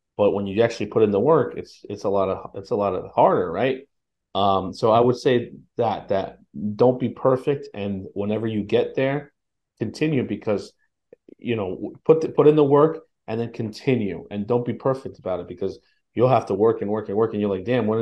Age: 30-49